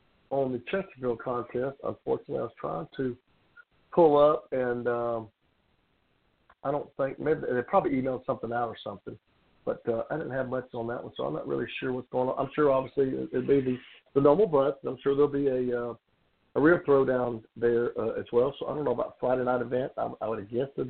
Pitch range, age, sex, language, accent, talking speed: 120-155 Hz, 50-69, male, English, American, 225 wpm